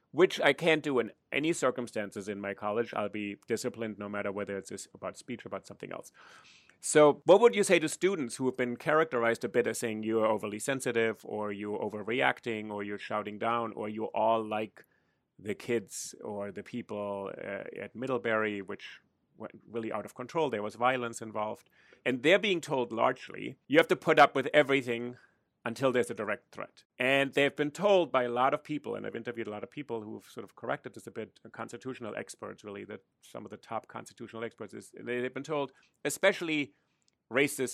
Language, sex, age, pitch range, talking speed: English, male, 30-49, 110-140 Hz, 200 wpm